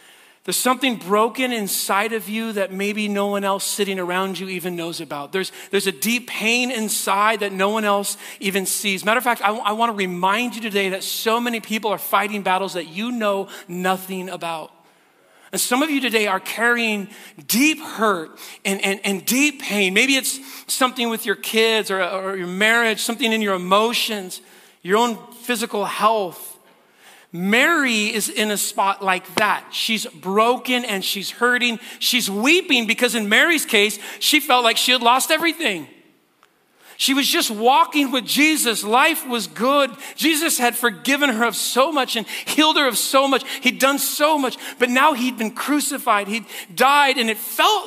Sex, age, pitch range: male, 40-59, 195-255 Hz